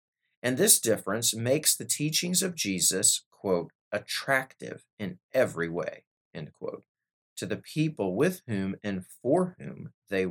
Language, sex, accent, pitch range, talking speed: English, male, American, 100-150 Hz, 140 wpm